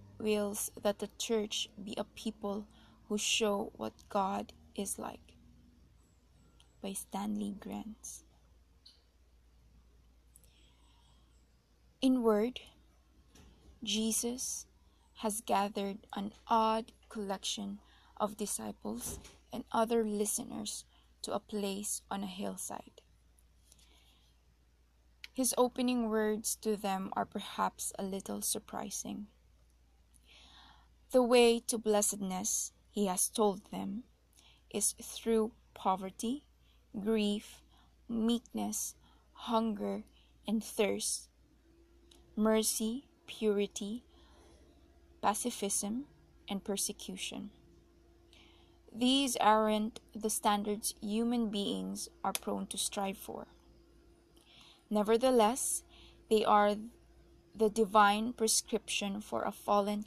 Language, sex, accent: English, female, Filipino